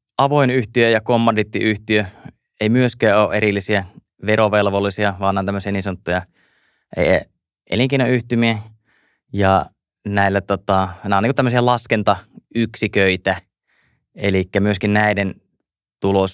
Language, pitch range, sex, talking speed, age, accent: Finnish, 95-105 Hz, male, 90 wpm, 20-39, native